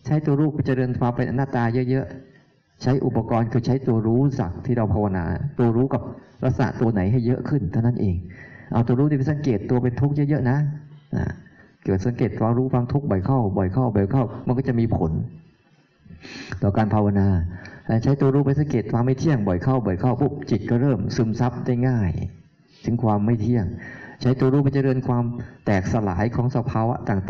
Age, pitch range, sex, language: 20-39, 105-130 Hz, male, Thai